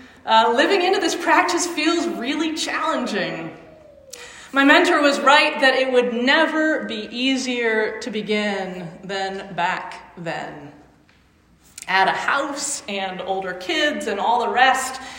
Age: 30-49